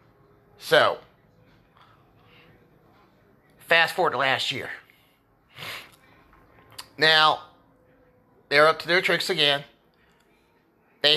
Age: 30-49